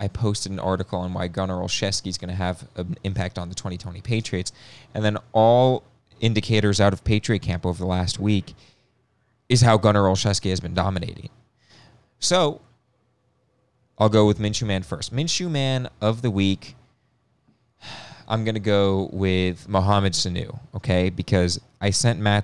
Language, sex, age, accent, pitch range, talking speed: English, male, 20-39, American, 95-125 Hz, 165 wpm